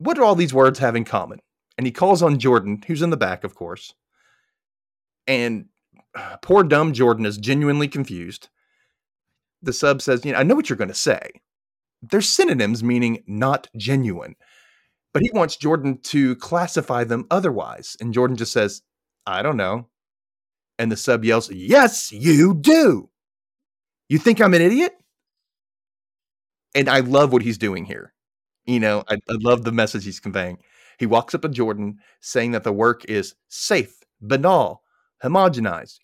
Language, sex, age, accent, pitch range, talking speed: English, male, 30-49, American, 115-170 Hz, 165 wpm